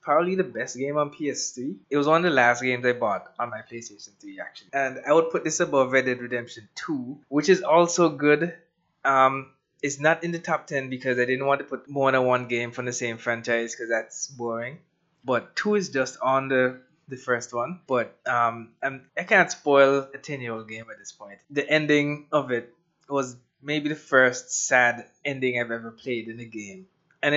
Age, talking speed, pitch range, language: 20-39, 215 wpm, 120-150 Hz, English